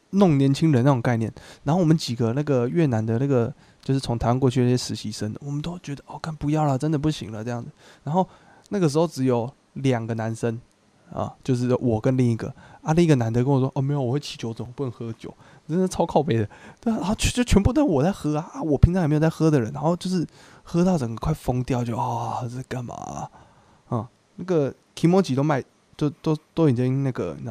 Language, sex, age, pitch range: Chinese, male, 20-39, 120-155 Hz